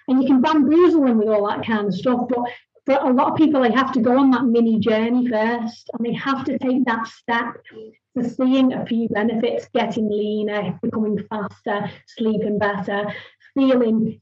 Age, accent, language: 30-49, British, English